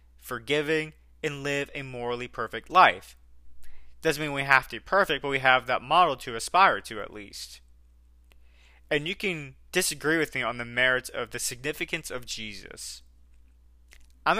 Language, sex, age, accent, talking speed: English, male, 20-39, American, 165 wpm